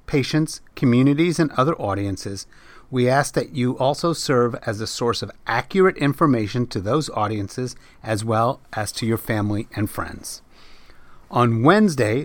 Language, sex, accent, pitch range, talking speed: English, male, American, 110-145 Hz, 145 wpm